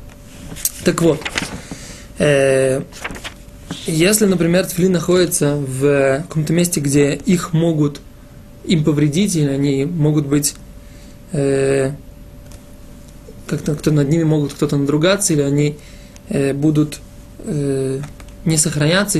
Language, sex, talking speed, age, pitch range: Russian, male, 105 wpm, 20-39, 150-180 Hz